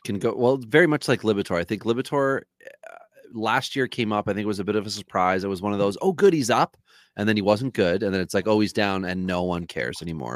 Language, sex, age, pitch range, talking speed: English, male, 30-49, 95-115 Hz, 290 wpm